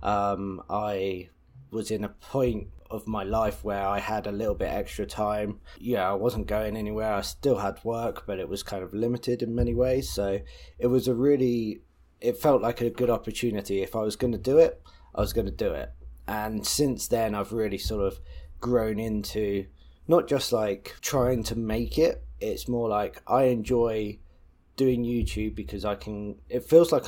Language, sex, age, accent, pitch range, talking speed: English, male, 20-39, British, 100-120 Hz, 195 wpm